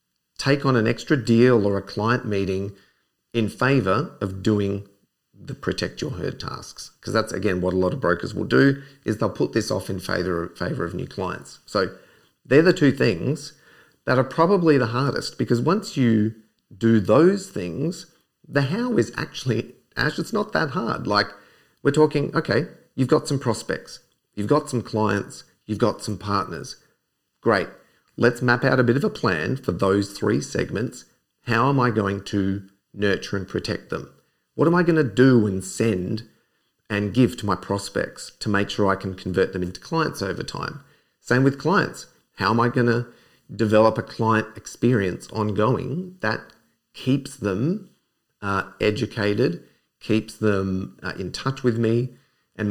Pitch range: 100-135 Hz